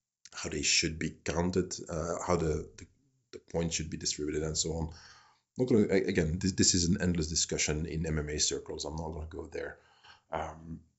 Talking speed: 200 wpm